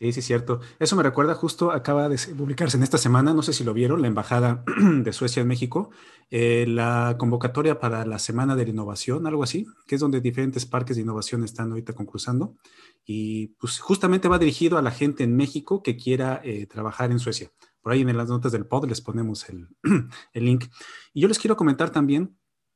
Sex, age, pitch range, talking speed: male, 40-59, 120-150 Hz, 210 wpm